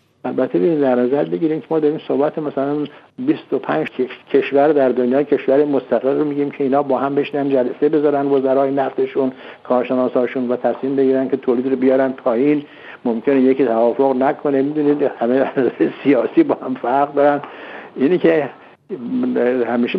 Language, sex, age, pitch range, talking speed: Persian, male, 60-79, 120-150 Hz, 155 wpm